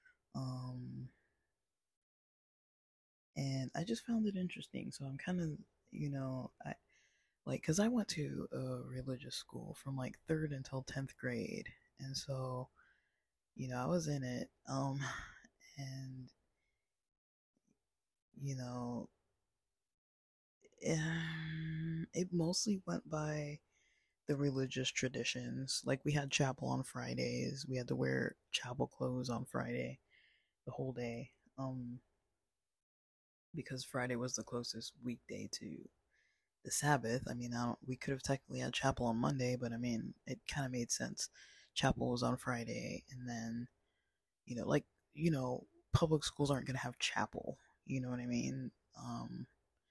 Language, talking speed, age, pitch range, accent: English, 140 wpm, 20-39, 120-145 Hz, American